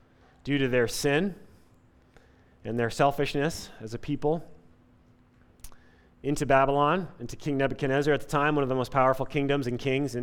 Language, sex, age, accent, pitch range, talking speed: English, male, 30-49, American, 115-145 Hz, 155 wpm